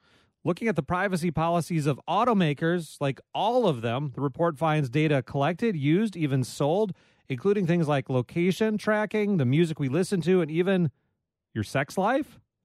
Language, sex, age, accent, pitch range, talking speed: English, male, 30-49, American, 130-170 Hz, 160 wpm